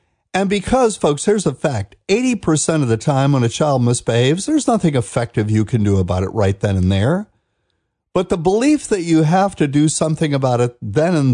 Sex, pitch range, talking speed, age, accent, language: male, 120-190 Hz, 205 wpm, 50-69, American, English